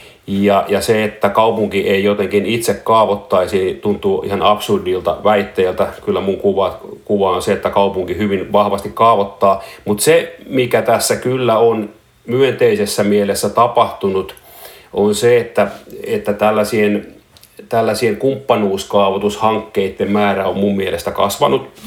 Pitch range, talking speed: 100-115 Hz, 120 wpm